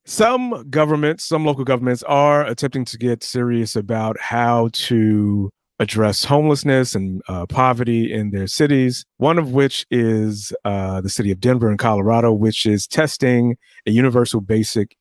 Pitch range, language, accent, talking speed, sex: 105-125 Hz, English, American, 150 wpm, male